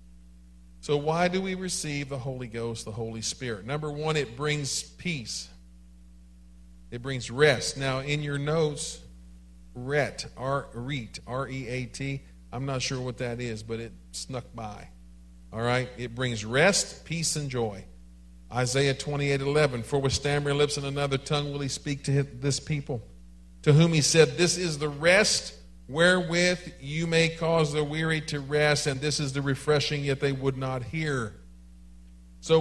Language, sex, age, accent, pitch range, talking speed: English, male, 50-69, American, 105-150 Hz, 160 wpm